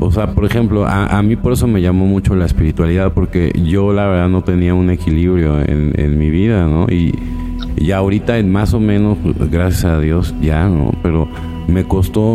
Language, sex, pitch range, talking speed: Spanish, male, 85-100 Hz, 200 wpm